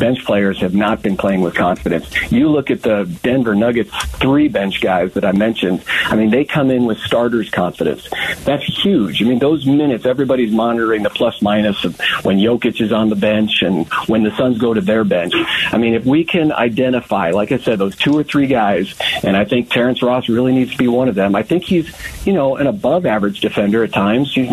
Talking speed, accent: 225 wpm, American